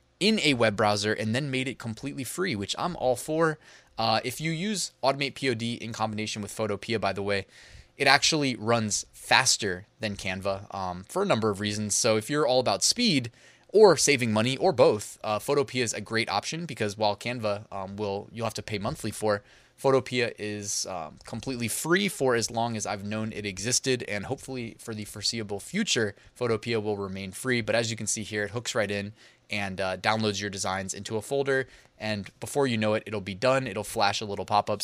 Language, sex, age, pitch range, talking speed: English, male, 20-39, 100-125 Hz, 210 wpm